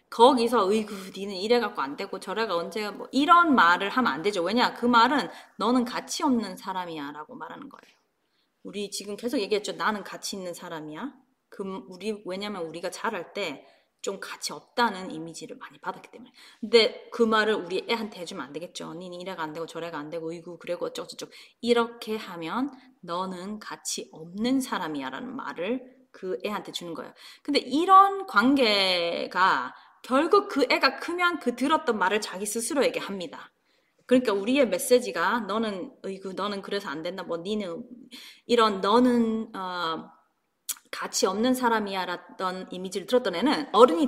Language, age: Korean, 20-39